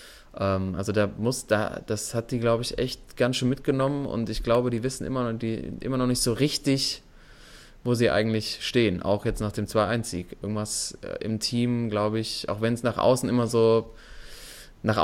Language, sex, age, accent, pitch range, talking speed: German, male, 20-39, German, 105-120 Hz, 195 wpm